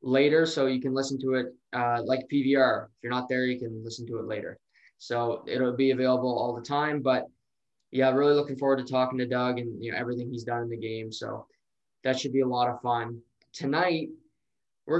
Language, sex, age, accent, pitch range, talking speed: English, male, 20-39, American, 120-145 Hz, 220 wpm